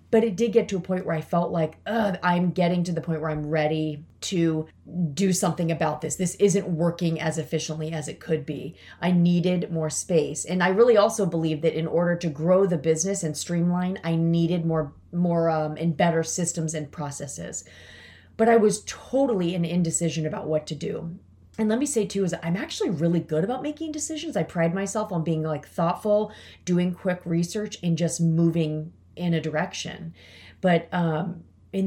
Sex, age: female, 30-49